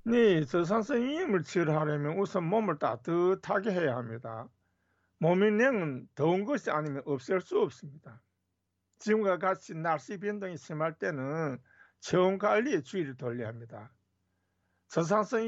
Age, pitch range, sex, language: 50-69, 130-200 Hz, male, Korean